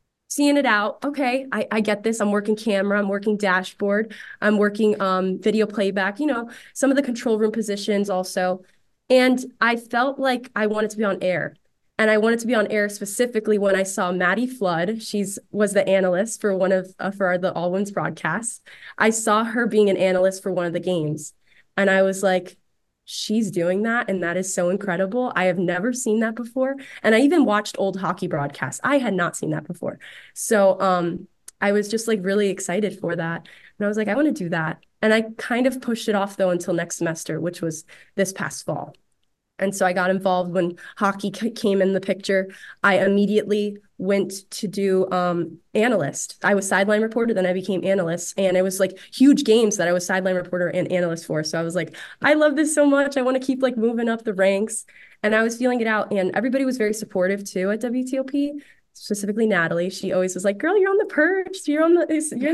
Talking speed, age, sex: 220 wpm, 20-39, female